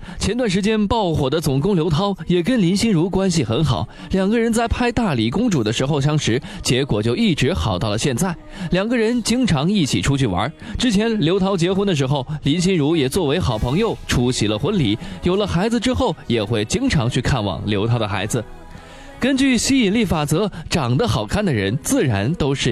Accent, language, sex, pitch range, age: native, Chinese, male, 130-205 Hz, 20-39